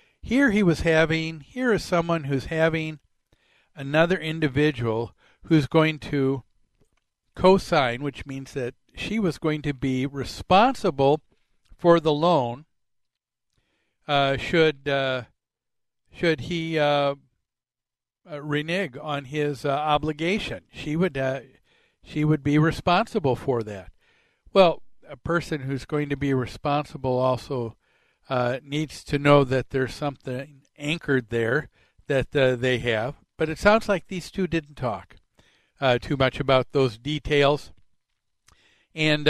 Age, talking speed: 60-79, 130 wpm